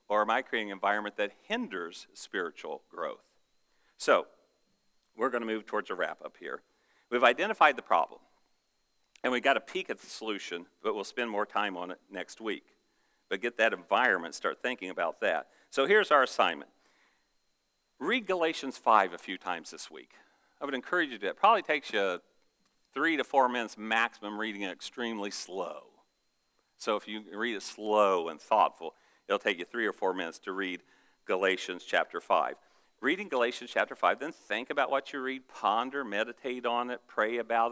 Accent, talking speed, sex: American, 185 wpm, male